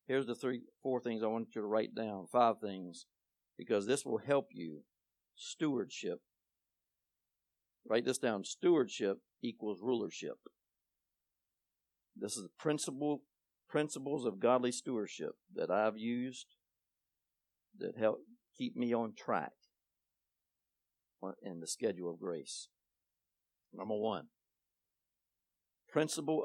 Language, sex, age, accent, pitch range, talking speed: English, male, 60-79, American, 95-125 Hz, 115 wpm